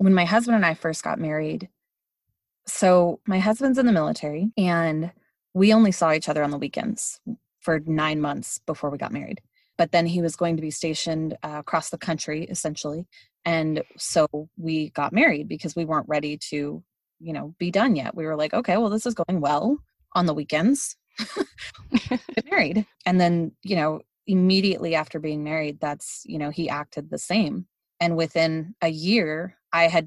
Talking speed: 185 wpm